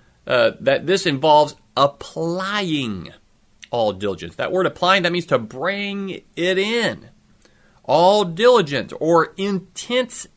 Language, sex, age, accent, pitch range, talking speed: English, male, 40-59, American, 150-195 Hz, 115 wpm